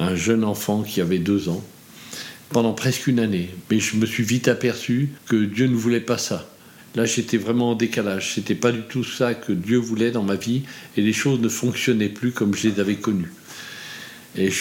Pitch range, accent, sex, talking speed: 105-120 Hz, French, male, 215 wpm